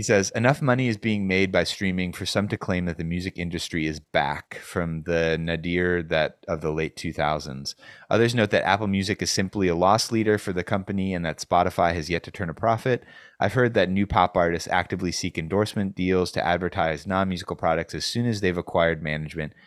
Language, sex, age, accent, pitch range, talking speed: English, male, 30-49, American, 85-110 Hz, 210 wpm